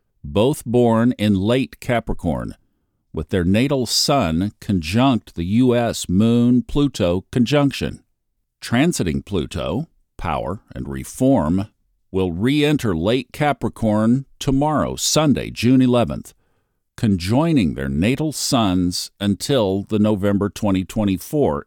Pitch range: 95-125 Hz